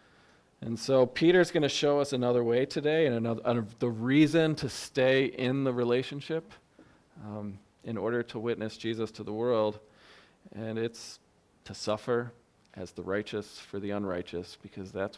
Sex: male